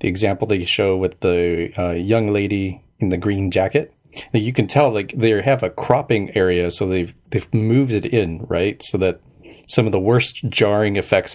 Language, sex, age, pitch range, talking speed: English, male, 30-49, 90-110 Hz, 200 wpm